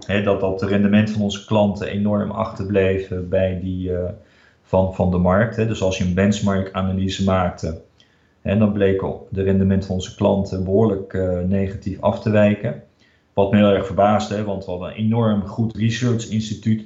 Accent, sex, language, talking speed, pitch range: Dutch, male, Dutch, 180 wpm, 95-110 Hz